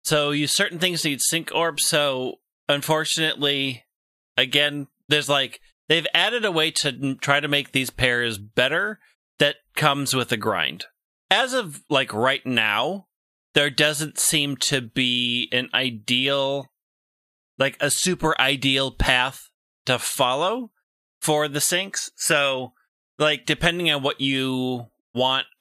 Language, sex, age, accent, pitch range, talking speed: English, male, 30-49, American, 120-150 Hz, 135 wpm